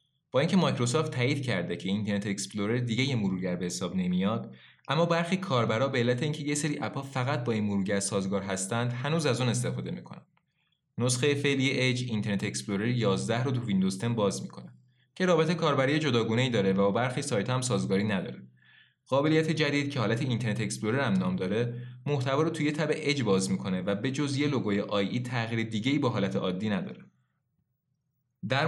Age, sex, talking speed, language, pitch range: 20-39, male, 180 wpm, Persian, 100-145 Hz